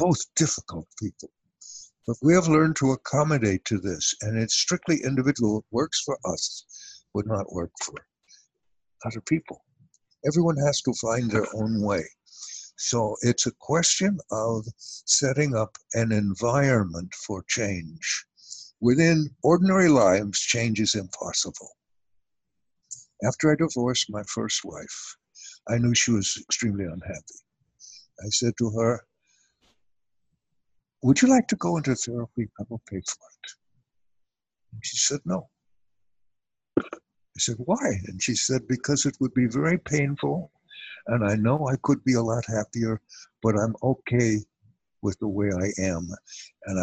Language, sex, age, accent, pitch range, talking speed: English, male, 60-79, American, 105-140 Hz, 140 wpm